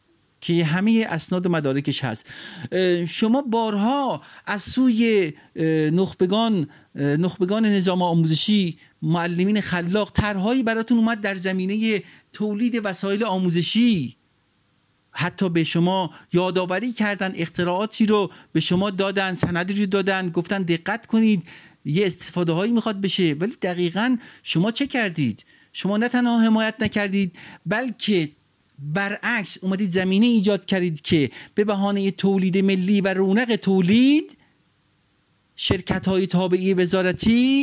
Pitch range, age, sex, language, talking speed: 175-215 Hz, 50-69, male, Persian, 115 wpm